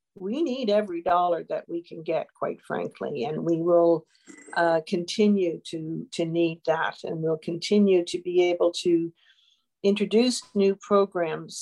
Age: 50-69